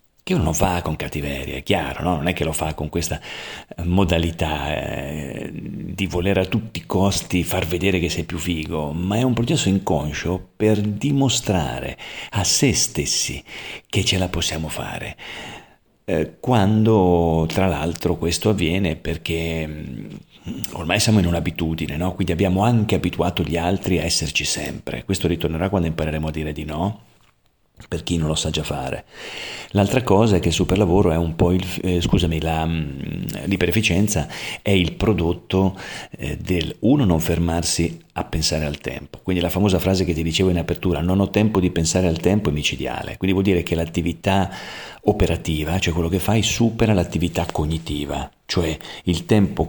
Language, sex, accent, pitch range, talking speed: Italian, male, native, 80-95 Hz, 165 wpm